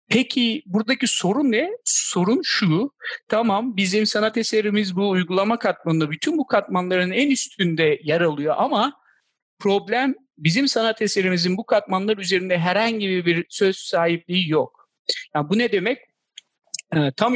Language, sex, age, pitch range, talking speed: Turkish, male, 50-69, 165-220 Hz, 135 wpm